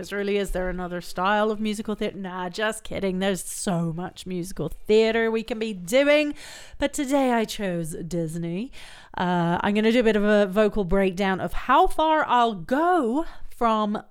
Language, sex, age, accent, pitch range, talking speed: English, female, 30-49, British, 190-230 Hz, 175 wpm